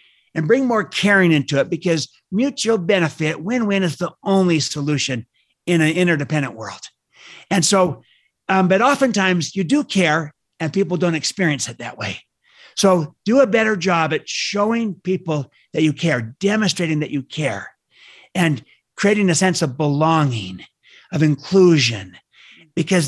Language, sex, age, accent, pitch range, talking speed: English, male, 60-79, American, 145-190 Hz, 150 wpm